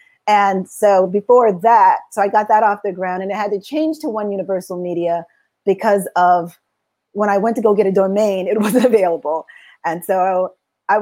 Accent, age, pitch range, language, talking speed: American, 30-49, 195-235 Hz, English, 195 wpm